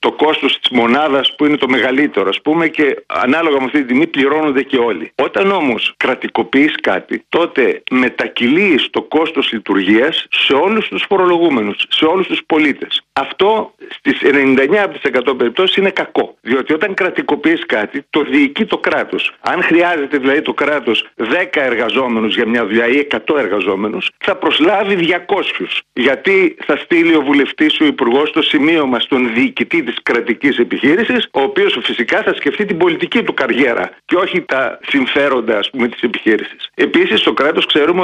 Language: Greek